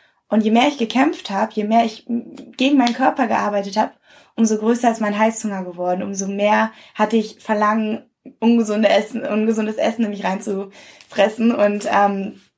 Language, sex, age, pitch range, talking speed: German, female, 20-39, 205-235 Hz, 160 wpm